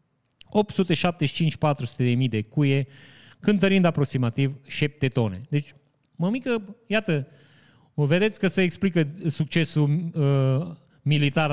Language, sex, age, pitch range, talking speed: Romanian, male, 30-49, 135-185 Hz, 95 wpm